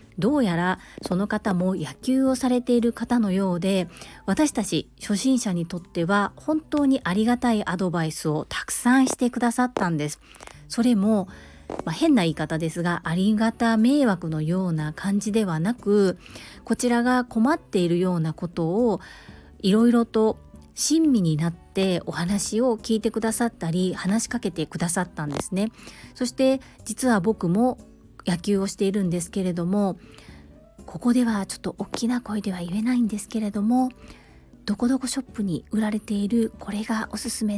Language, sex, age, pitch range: Japanese, female, 40-59, 185-240 Hz